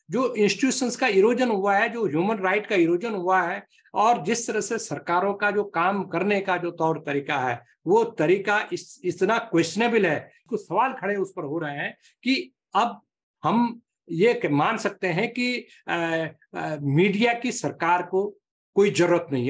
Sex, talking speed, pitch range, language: male, 180 wpm, 180-225 Hz, Hindi